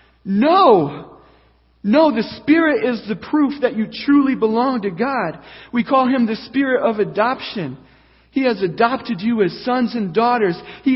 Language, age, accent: English, 40-59, American